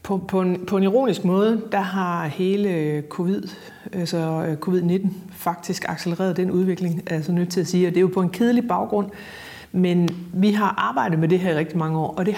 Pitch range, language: 170-195 Hz, Danish